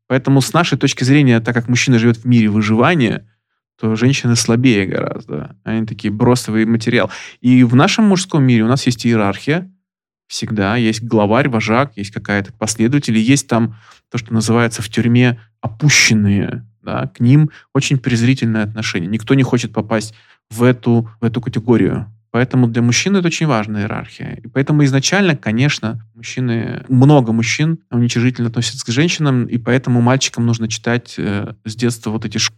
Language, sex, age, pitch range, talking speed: Russian, male, 20-39, 110-130 Hz, 160 wpm